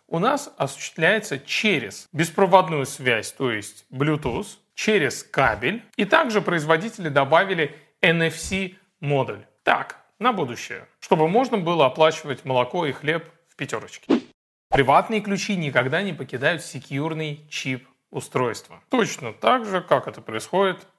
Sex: male